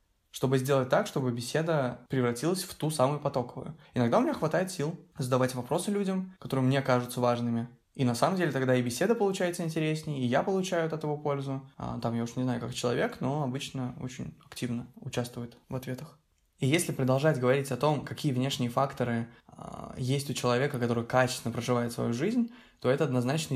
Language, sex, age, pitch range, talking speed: Russian, male, 20-39, 125-145 Hz, 180 wpm